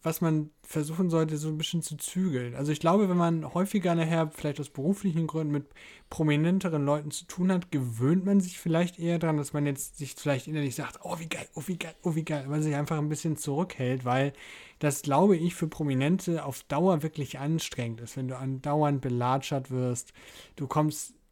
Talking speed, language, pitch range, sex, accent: 205 wpm, German, 140-165 Hz, male, German